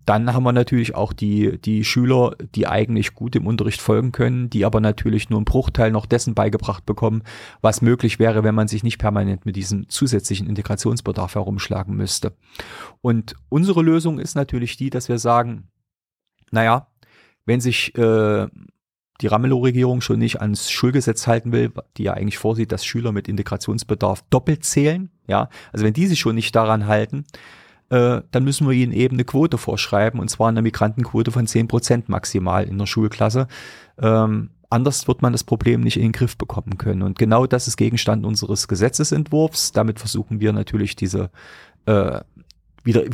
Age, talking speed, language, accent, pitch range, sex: 40-59, 170 wpm, German, German, 105-125 Hz, male